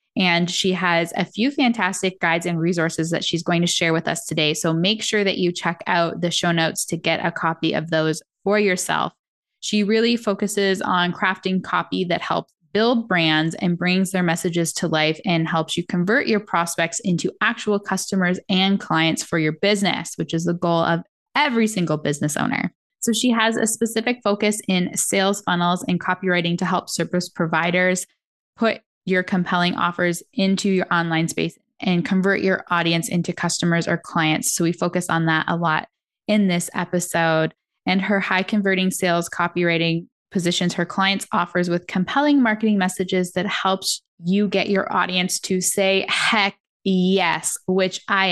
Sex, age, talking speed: female, 10-29, 175 wpm